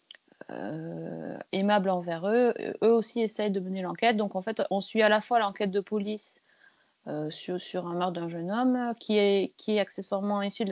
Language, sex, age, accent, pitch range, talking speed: French, female, 30-49, French, 180-215 Hz, 215 wpm